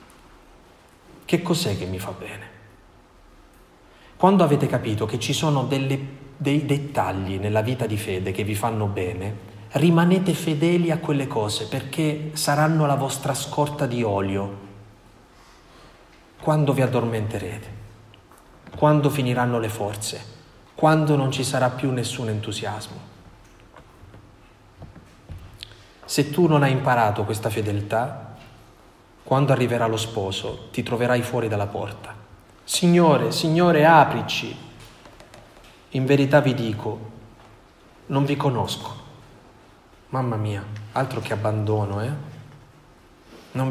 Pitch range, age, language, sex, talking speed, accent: 105-140 Hz, 30-49, Italian, male, 110 wpm, native